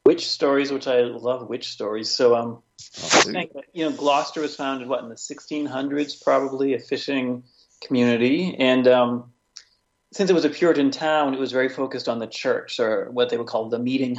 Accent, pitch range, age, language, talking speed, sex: American, 120-150 Hz, 40-59, English, 190 wpm, male